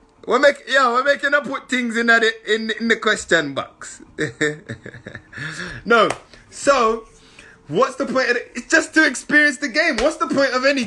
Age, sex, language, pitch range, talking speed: 30-49, male, English, 200-265 Hz, 180 wpm